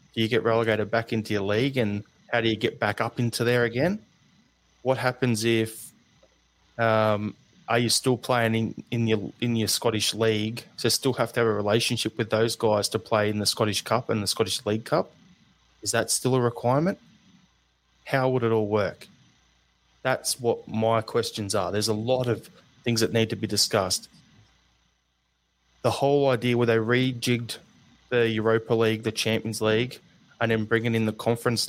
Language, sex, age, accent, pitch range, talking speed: English, male, 20-39, Australian, 105-120 Hz, 180 wpm